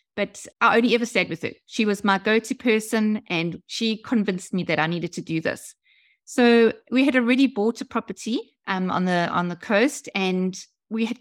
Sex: female